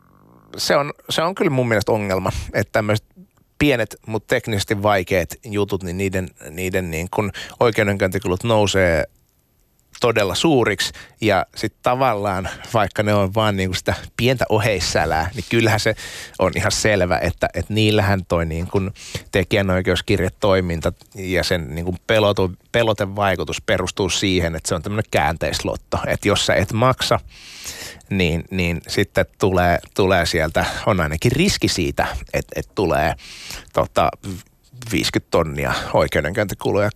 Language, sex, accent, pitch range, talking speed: Finnish, male, native, 90-110 Hz, 135 wpm